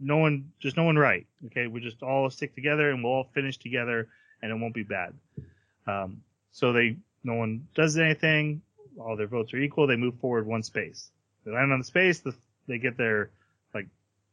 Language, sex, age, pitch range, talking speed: English, male, 30-49, 115-150 Hz, 205 wpm